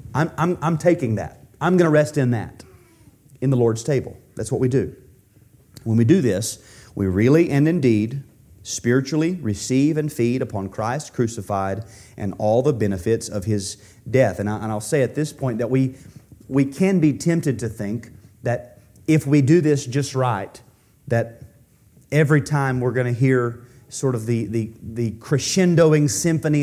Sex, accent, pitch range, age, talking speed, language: male, American, 115-150 Hz, 30-49, 180 wpm, English